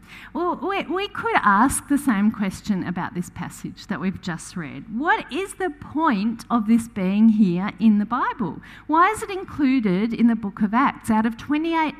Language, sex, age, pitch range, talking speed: English, female, 50-69, 195-275 Hz, 185 wpm